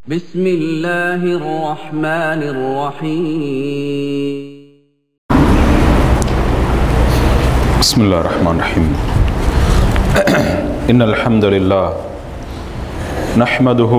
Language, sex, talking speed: Tamil, male, 50 wpm